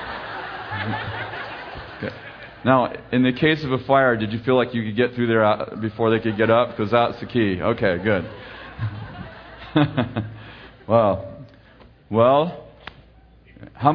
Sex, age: male, 40-59